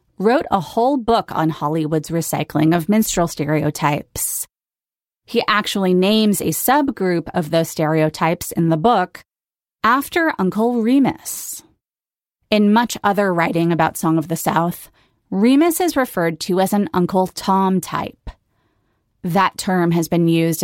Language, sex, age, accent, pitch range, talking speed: English, female, 30-49, American, 160-210 Hz, 135 wpm